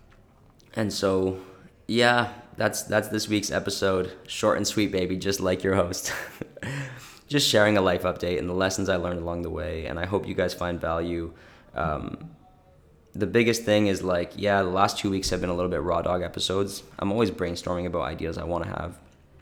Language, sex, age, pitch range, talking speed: English, male, 20-39, 90-100 Hz, 200 wpm